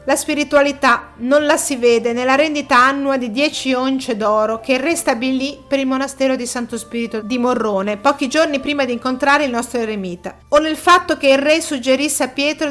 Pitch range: 235-285 Hz